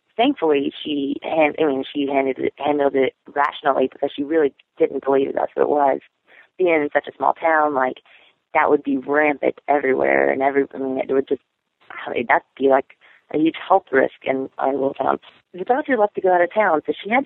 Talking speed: 215 wpm